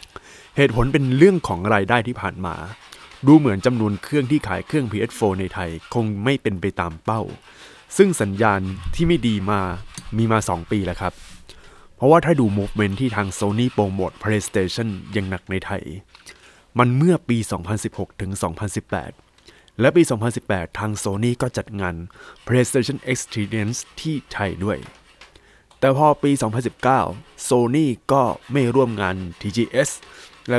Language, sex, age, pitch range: Thai, male, 20-39, 100-135 Hz